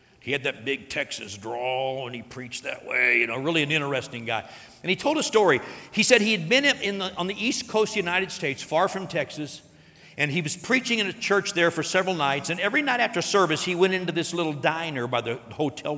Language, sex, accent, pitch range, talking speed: English, male, American, 145-205 Hz, 235 wpm